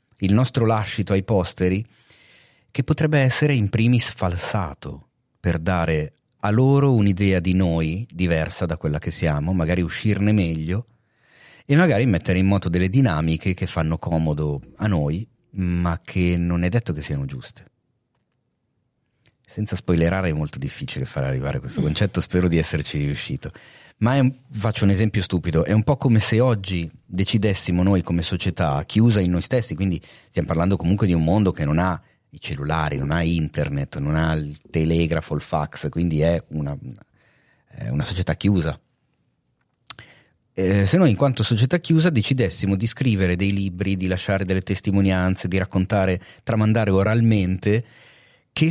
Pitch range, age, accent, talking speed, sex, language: 85-115 Hz, 30-49, native, 155 wpm, male, Italian